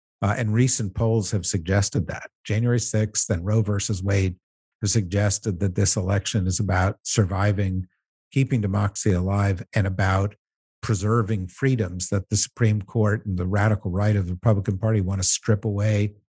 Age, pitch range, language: 50-69, 100-120 Hz, English